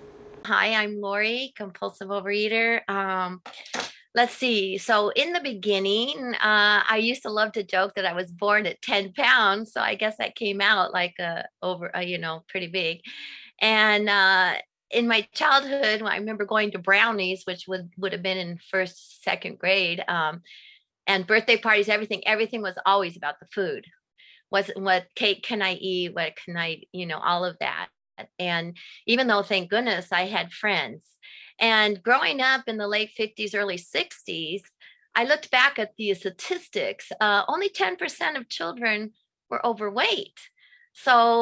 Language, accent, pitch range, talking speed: English, American, 190-235 Hz, 165 wpm